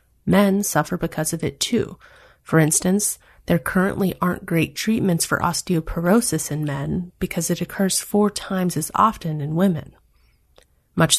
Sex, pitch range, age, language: female, 155-195 Hz, 30-49, English